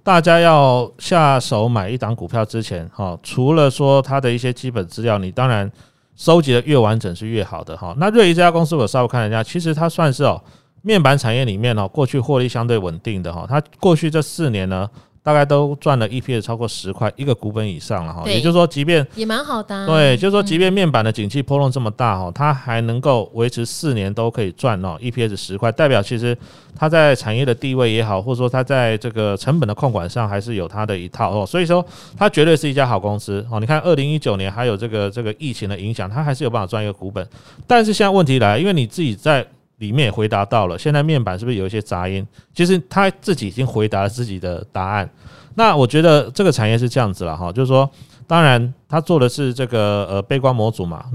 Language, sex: Chinese, male